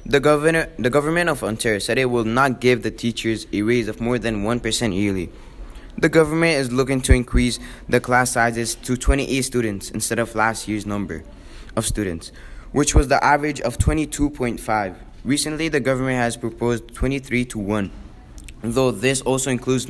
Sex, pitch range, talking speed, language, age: male, 110-135 Hz, 170 wpm, English, 20-39